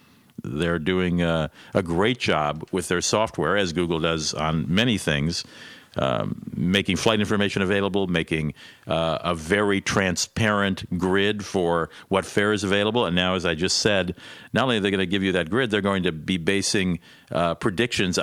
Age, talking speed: 50-69, 180 wpm